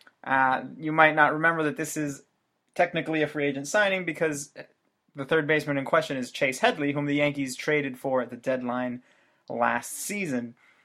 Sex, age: male, 20-39